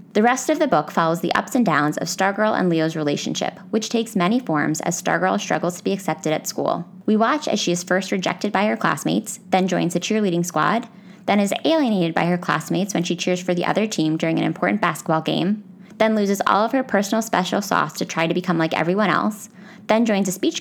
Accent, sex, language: American, female, English